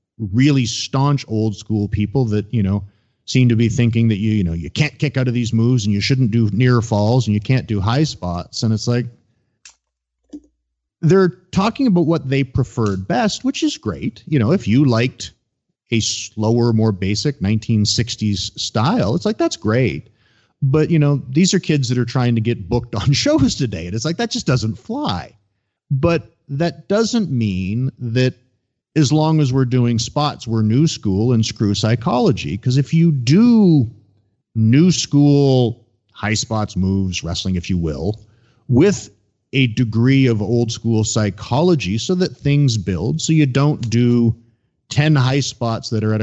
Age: 40-59